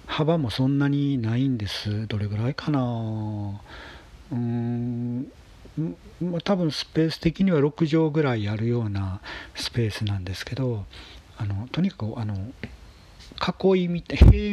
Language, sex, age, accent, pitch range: Japanese, male, 40-59, native, 100-130 Hz